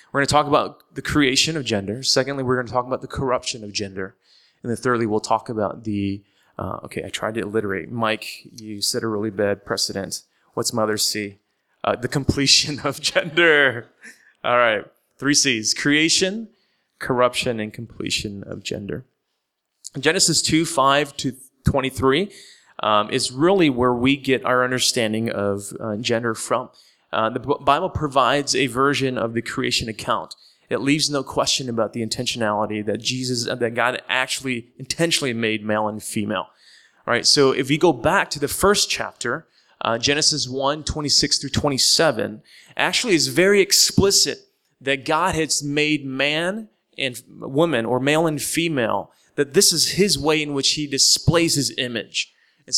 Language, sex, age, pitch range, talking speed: English, male, 20-39, 115-150 Hz, 165 wpm